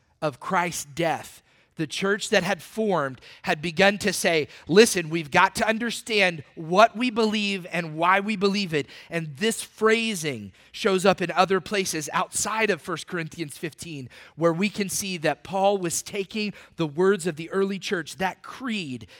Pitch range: 165-210 Hz